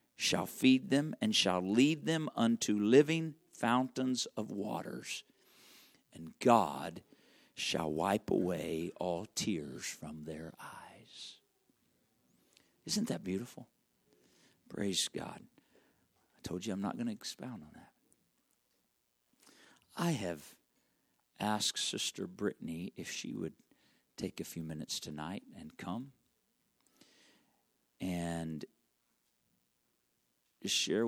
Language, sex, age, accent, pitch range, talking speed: English, male, 50-69, American, 100-130 Hz, 105 wpm